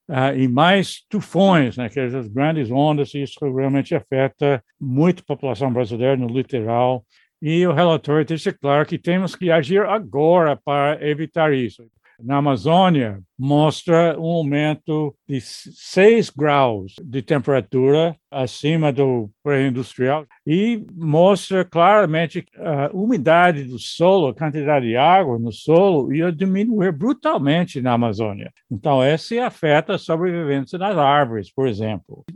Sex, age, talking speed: male, 60-79, 135 wpm